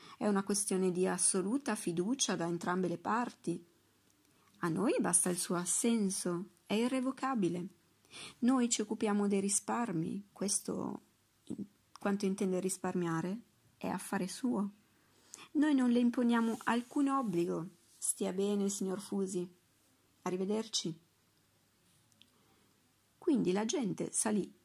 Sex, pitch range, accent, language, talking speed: female, 180-225 Hz, native, Italian, 110 wpm